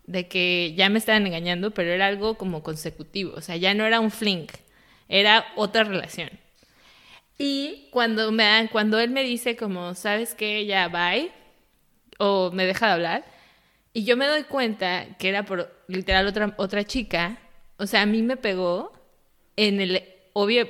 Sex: female